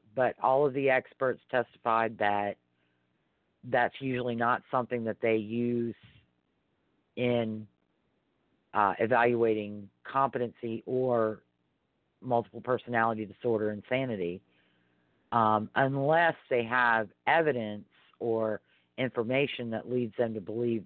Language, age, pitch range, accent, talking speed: English, 40-59, 105-125 Hz, American, 100 wpm